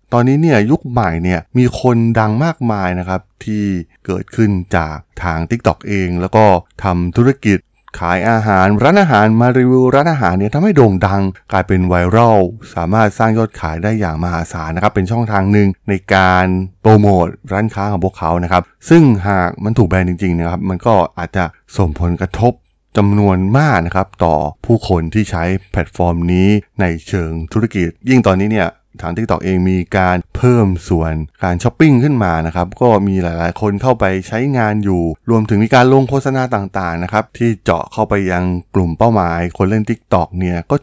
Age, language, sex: 20-39, Thai, male